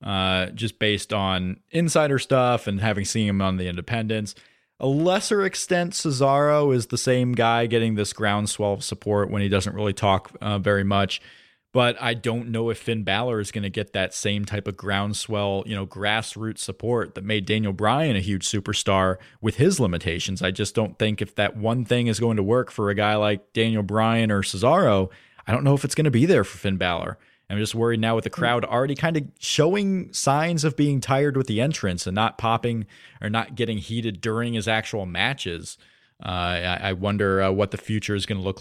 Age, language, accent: 20-39, English, American